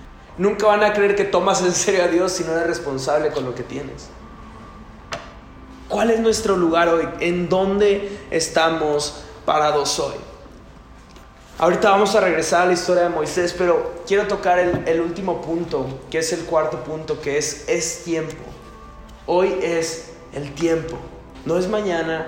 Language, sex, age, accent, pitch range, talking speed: Spanish, male, 20-39, Mexican, 140-185 Hz, 160 wpm